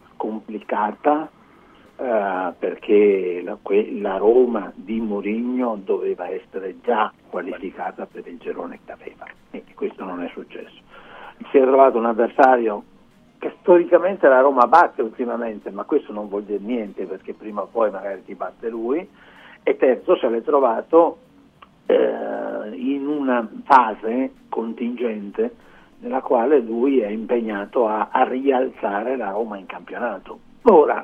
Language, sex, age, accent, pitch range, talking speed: Italian, male, 60-79, native, 115-170 Hz, 135 wpm